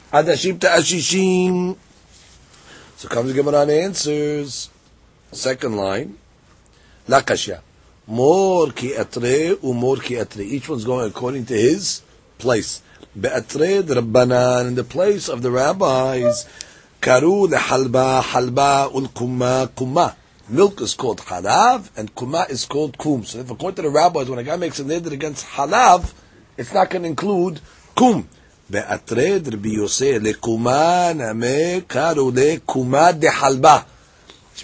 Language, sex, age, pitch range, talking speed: English, male, 40-59, 125-180 Hz, 110 wpm